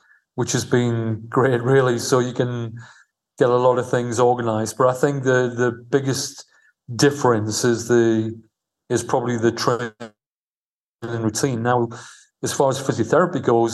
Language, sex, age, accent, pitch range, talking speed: English, male, 40-59, British, 120-130 Hz, 155 wpm